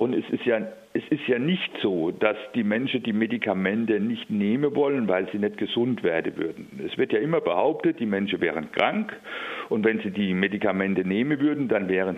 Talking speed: 200 wpm